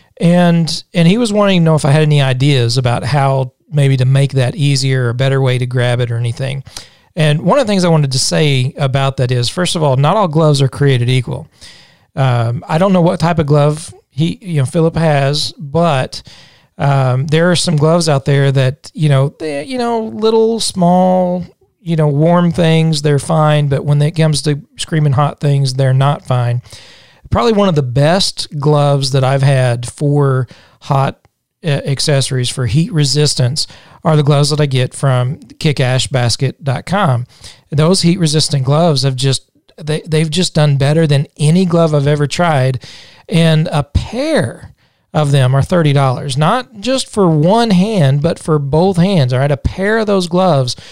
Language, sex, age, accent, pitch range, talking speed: English, male, 40-59, American, 135-165 Hz, 185 wpm